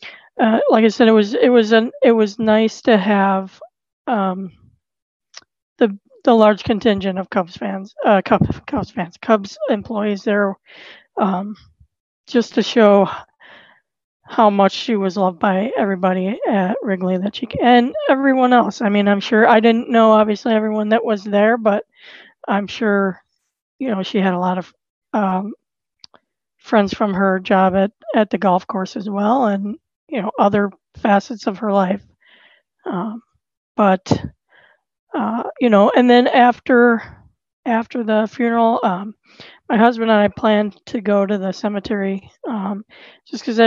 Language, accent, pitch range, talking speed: English, American, 200-235 Hz, 160 wpm